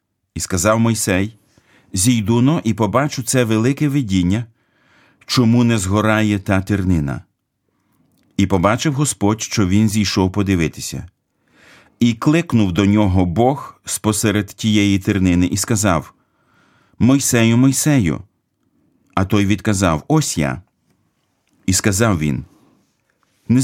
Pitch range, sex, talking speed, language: 90-120 Hz, male, 105 wpm, Ukrainian